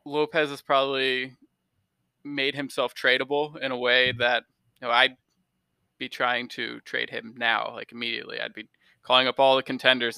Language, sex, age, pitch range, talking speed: English, male, 20-39, 120-140 Hz, 155 wpm